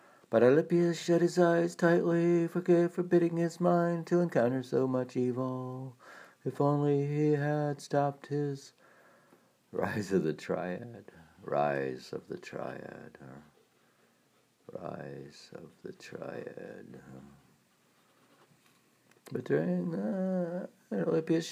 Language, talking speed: English, 110 wpm